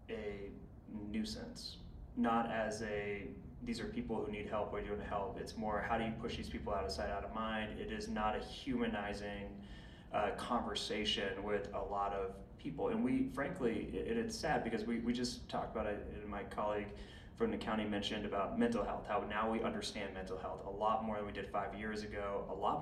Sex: male